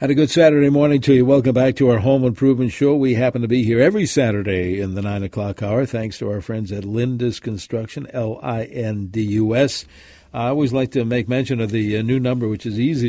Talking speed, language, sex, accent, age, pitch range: 240 wpm, English, male, American, 60-79, 105-130 Hz